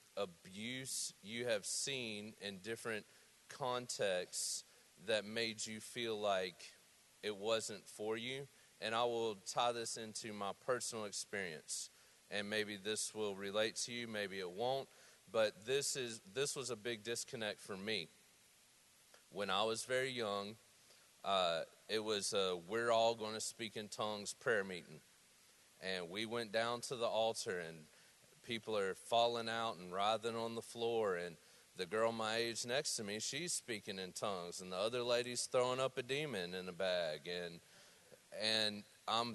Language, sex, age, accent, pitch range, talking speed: English, male, 40-59, American, 105-125 Hz, 160 wpm